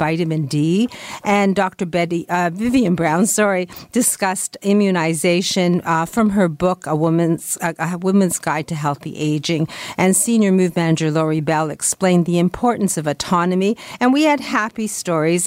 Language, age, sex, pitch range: English, 50-69, female, 160-200 Hz